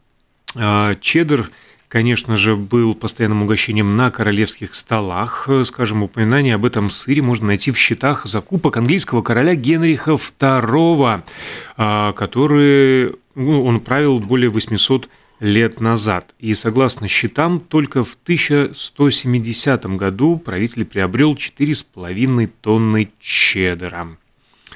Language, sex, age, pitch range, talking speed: Russian, male, 30-49, 110-140 Hz, 100 wpm